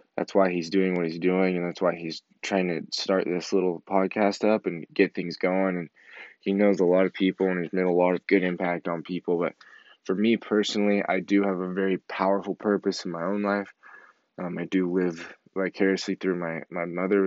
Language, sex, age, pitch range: English, male, 20-39, 85-95 Hz